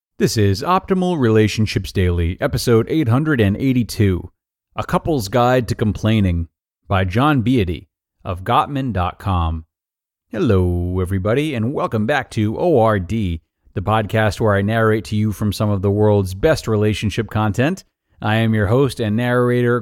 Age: 30-49